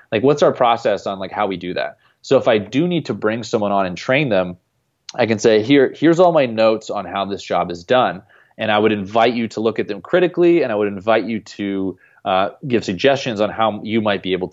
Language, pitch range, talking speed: English, 100-120 Hz, 250 wpm